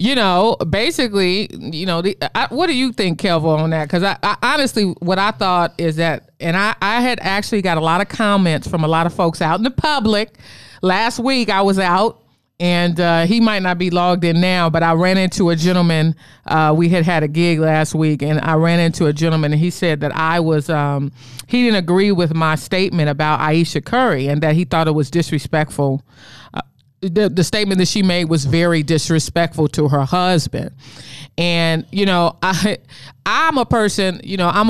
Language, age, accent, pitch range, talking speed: English, 40-59, American, 155-200 Hz, 210 wpm